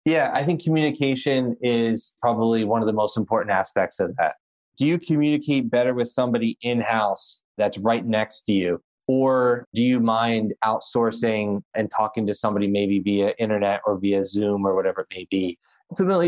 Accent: American